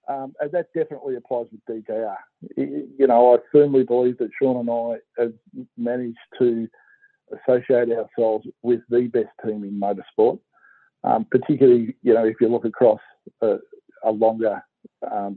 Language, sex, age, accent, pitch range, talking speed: English, male, 50-69, Australian, 115-160 Hz, 150 wpm